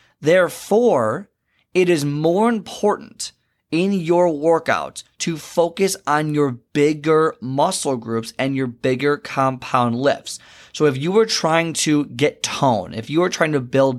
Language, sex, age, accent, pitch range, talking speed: English, male, 20-39, American, 125-160 Hz, 145 wpm